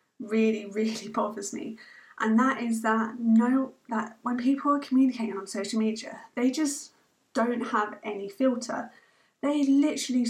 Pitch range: 225-270 Hz